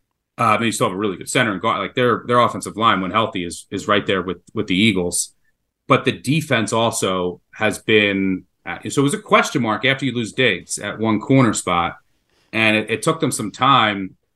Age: 30-49